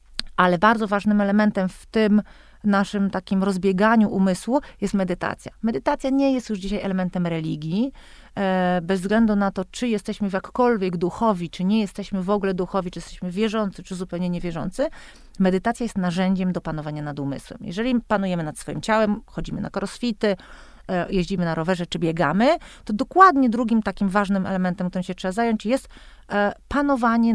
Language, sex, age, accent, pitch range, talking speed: Polish, female, 40-59, native, 185-225 Hz, 160 wpm